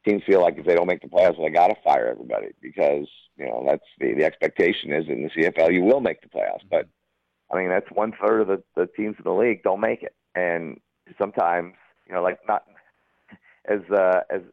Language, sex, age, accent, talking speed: English, male, 50-69, American, 225 wpm